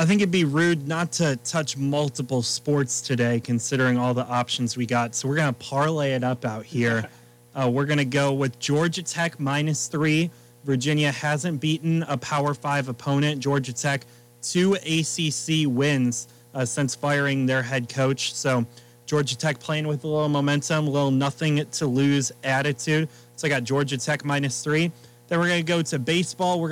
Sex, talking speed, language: male, 185 wpm, English